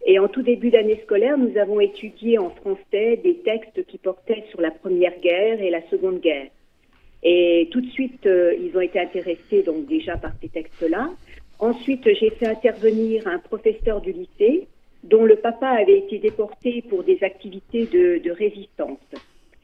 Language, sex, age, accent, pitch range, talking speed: French, female, 50-69, French, 190-270 Hz, 170 wpm